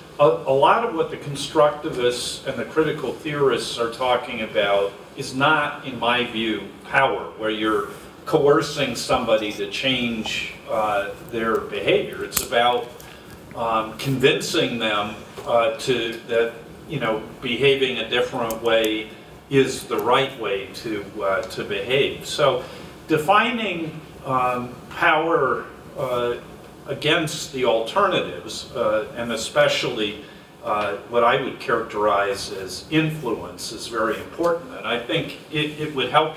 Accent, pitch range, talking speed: American, 110-145 Hz, 130 wpm